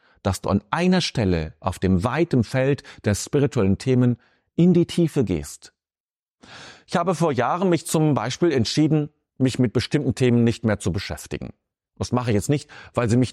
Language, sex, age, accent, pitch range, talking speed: German, male, 40-59, German, 100-150 Hz, 180 wpm